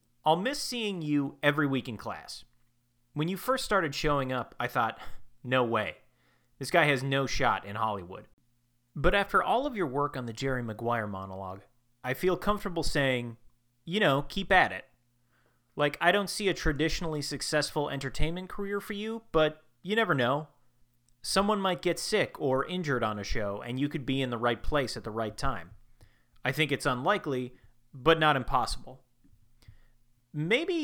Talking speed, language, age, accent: 175 wpm, English, 30-49, American